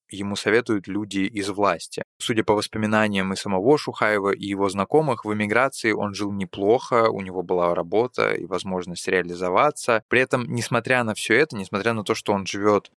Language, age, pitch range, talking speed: Russian, 20-39, 95-110 Hz, 175 wpm